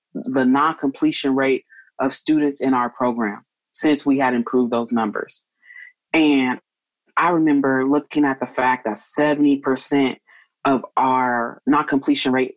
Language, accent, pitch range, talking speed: English, American, 125-155 Hz, 130 wpm